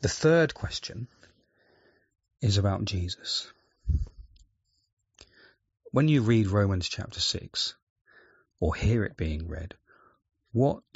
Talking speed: 100 wpm